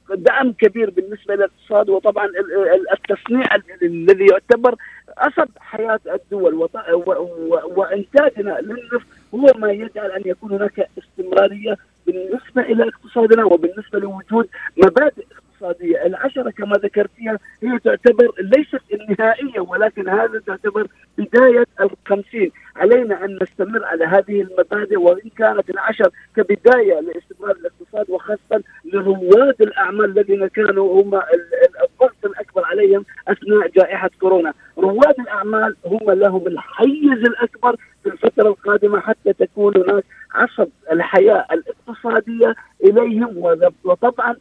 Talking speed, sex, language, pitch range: 110 wpm, male, Arabic, 195-265 Hz